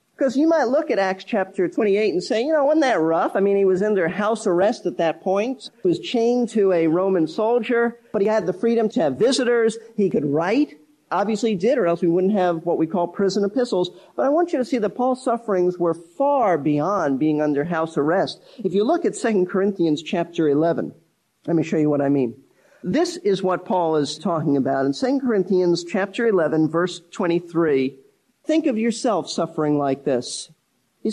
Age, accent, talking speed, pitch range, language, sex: 50-69, American, 210 wpm, 170-235 Hz, English, male